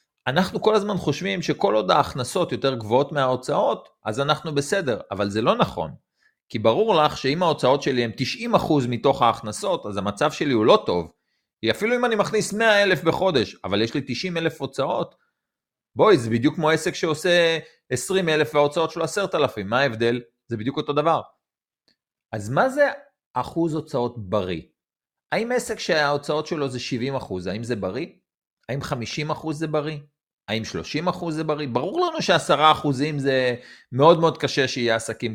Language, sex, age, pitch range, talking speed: Hebrew, male, 30-49, 115-160 Hz, 155 wpm